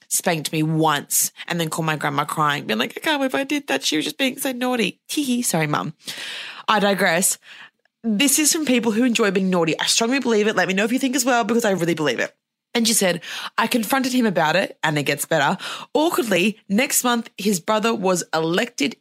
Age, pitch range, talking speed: 20-39, 170-240 Hz, 225 wpm